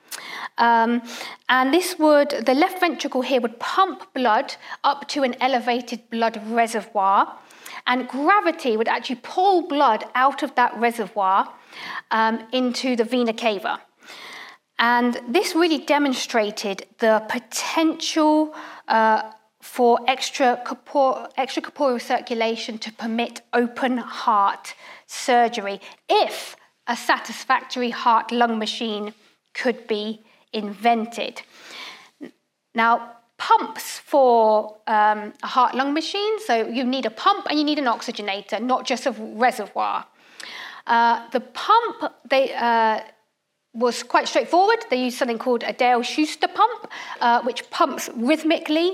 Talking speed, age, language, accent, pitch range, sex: 115 wpm, 40-59, English, British, 230-305 Hz, female